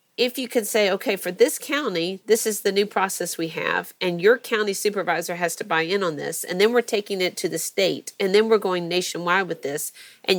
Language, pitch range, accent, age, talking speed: English, 175-225 Hz, American, 40-59, 235 wpm